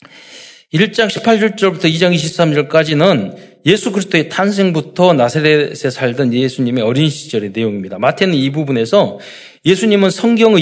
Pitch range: 140-210 Hz